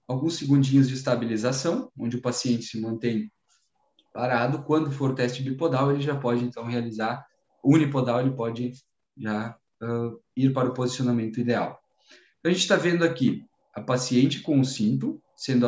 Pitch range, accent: 120-165 Hz, Brazilian